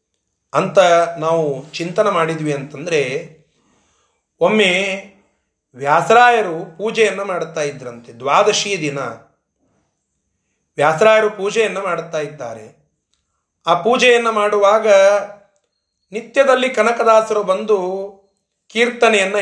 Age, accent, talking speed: 30-49, native, 70 wpm